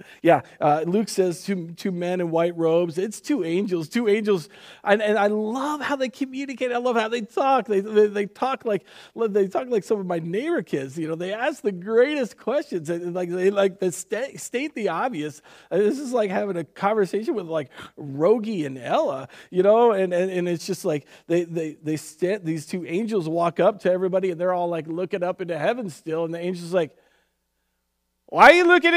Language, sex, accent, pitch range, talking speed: English, male, American, 160-240 Hz, 215 wpm